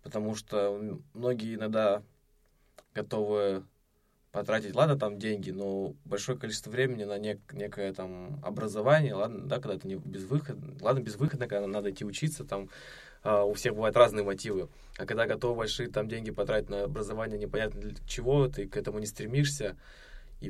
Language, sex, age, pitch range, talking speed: Russian, male, 20-39, 105-135 Hz, 155 wpm